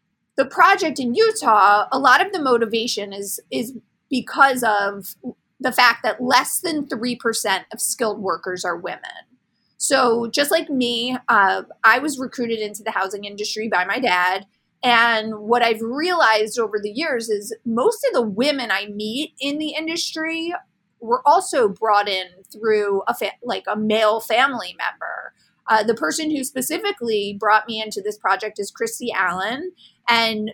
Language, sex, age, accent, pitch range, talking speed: English, female, 30-49, American, 210-260 Hz, 160 wpm